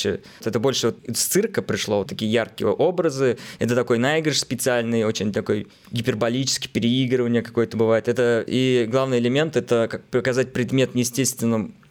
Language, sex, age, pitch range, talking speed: Russian, male, 20-39, 115-135 Hz, 135 wpm